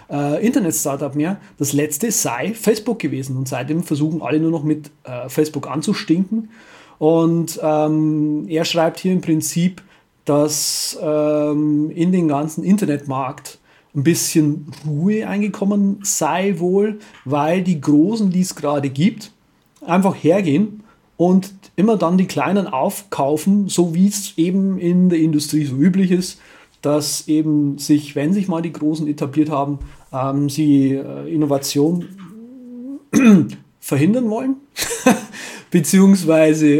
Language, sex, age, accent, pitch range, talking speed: German, male, 40-59, German, 150-190 Hz, 125 wpm